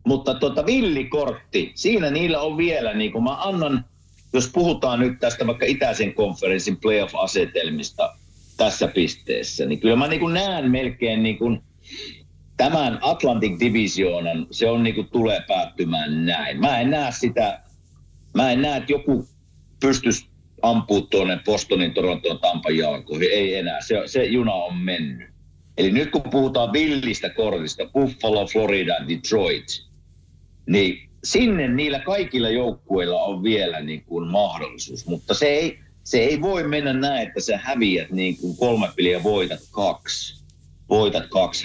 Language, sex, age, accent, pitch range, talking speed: Finnish, male, 50-69, native, 85-135 Hz, 140 wpm